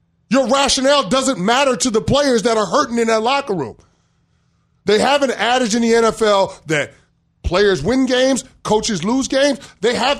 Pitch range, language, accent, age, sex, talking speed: 180-255 Hz, English, American, 30-49, male, 175 wpm